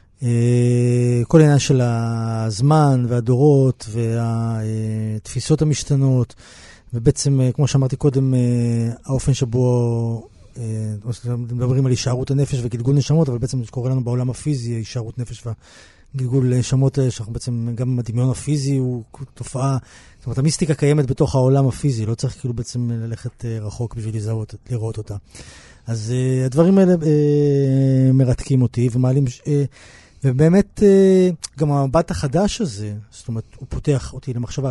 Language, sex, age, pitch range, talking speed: Hebrew, male, 30-49, 120-140 Hz, 130 wpm